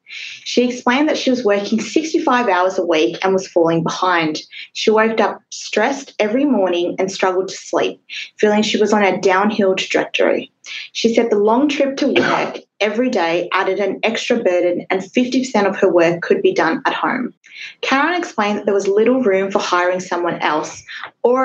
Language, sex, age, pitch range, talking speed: English, female, 20-39, 180-245 Hz, 185 wpm